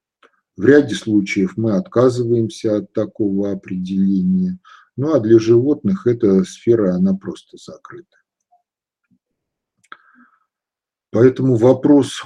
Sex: male